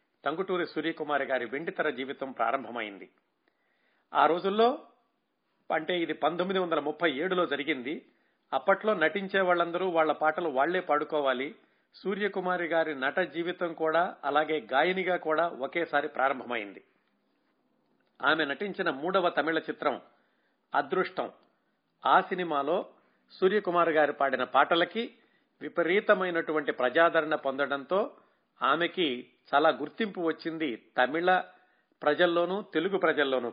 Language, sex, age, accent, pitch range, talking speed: Telugu, male, 50-69, native, 145-180 Hz, 95 wpm